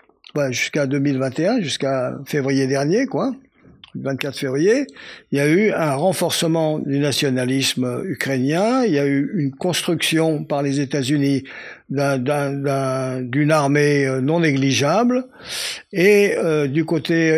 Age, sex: 60-79, male